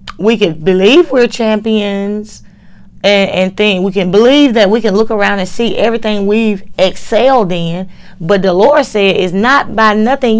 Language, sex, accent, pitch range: Japanese, female, American, 195-245 Hz